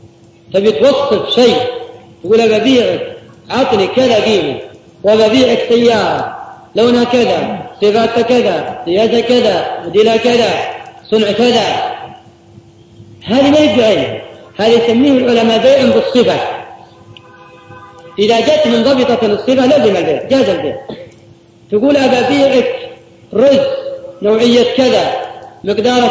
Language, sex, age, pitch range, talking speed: Arabic, female, 40-59, 215-265 Hz, 100 wpm